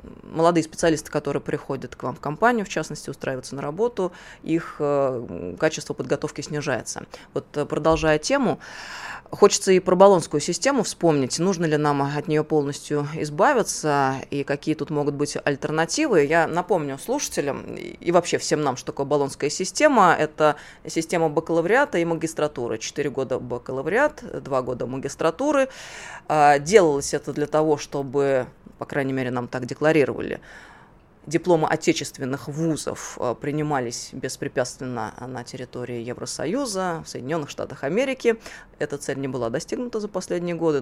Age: 20-39